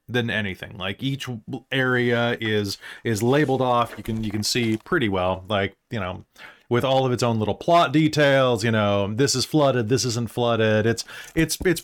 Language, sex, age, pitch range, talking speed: English, male, 30-49, 115-155 Hz, 195 wpm